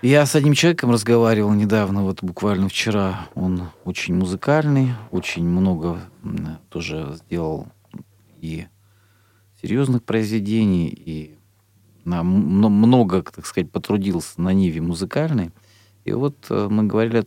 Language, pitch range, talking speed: Russian, 100-120 Hz, 110 wpm